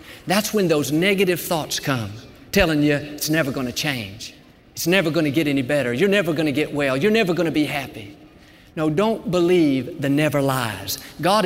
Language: English